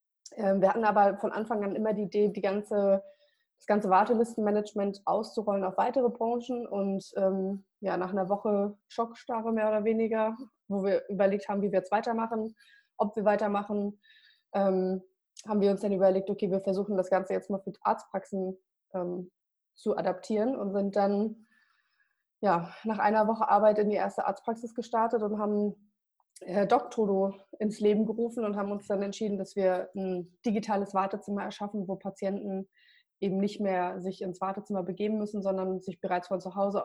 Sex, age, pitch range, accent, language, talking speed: female, 20-39, 190-215 Hz, German, German, 165 wpm